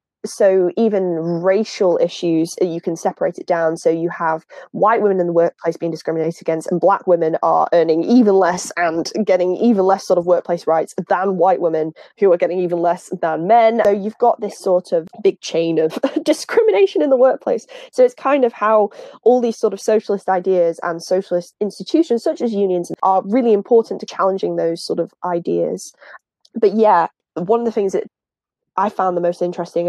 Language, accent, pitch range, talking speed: English, British, 170-215 Hz, 195 wpm